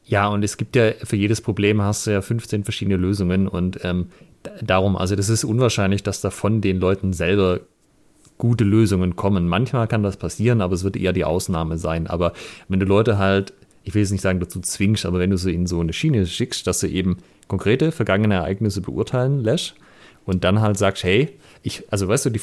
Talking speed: 215 wpm